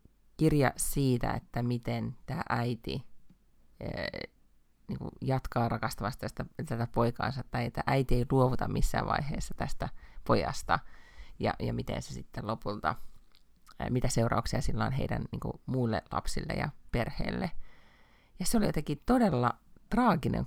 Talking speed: 130 wpm